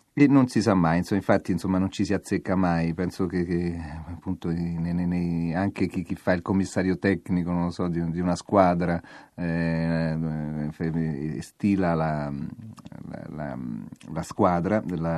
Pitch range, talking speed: 85-100 Hz, 165 wpm